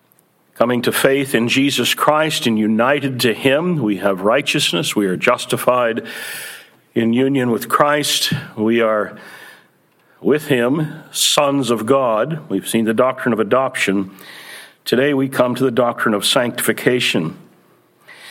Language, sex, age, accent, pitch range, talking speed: English, male, 60-79, American, 120-145 Hz, 135 wpm